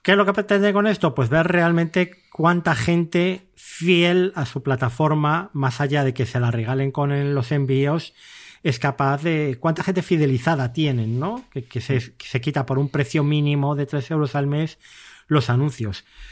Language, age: Spanish, 30-49